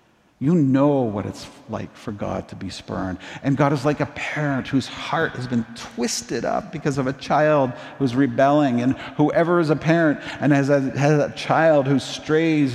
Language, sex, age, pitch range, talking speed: English, male, 50-69, 115-160 Hz, 190 wpm